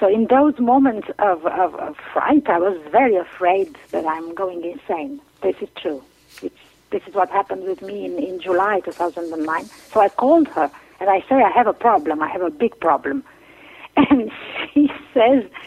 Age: 50-69